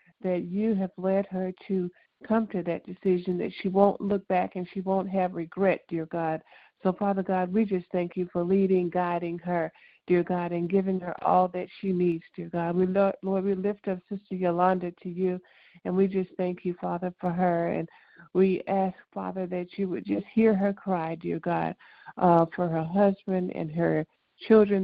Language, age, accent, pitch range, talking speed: English, 50-69, American, 175-190 Hz, 200 wpm